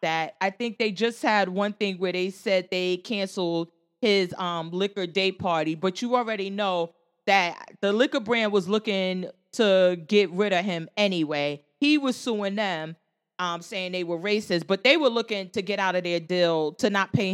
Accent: American